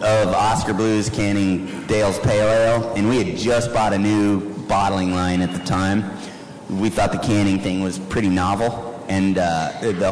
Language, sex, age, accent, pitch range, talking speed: English, male, 30-49, American, 95-115 Hz, 180 wpm